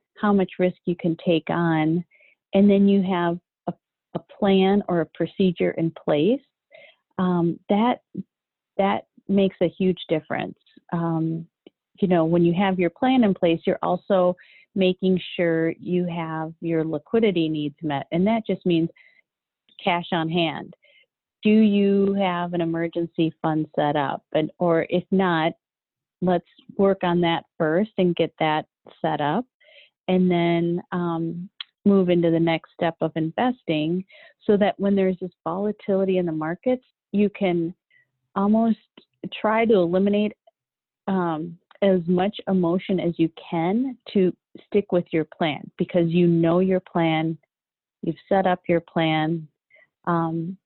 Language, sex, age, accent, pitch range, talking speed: English, female, 40-59, American, 165-195 Hz, 145 wpm